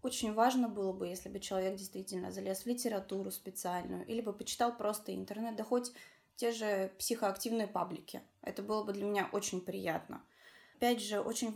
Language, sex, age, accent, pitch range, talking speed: Russian, female, 20-39, native, 185-225 Hz, 170 wpm